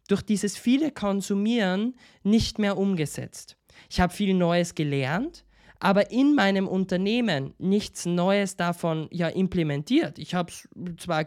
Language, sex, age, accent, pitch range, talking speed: German, male, 20-39, German, 175-215 Hz, 125 wpm